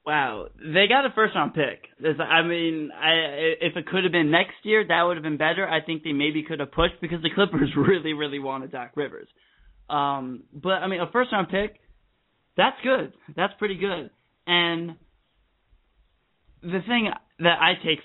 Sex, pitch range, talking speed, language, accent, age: male, 150-195 Hz, 175 wpm, English, American, 20-39